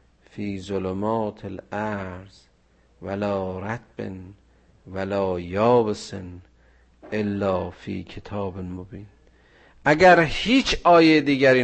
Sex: male